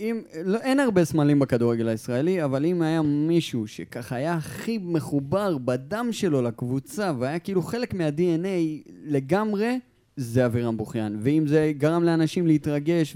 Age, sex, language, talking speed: 20-39, male, Hebrew, 140 wpm